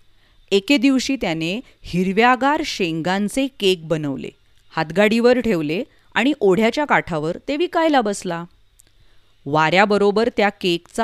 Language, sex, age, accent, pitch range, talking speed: Hindi, female, 30-49, native, 170-240 Hz, 75 wpm